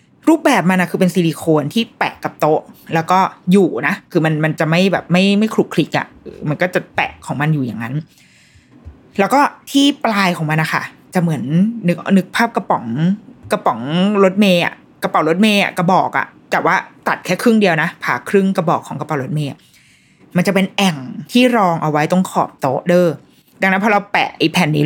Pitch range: 165-210 Hz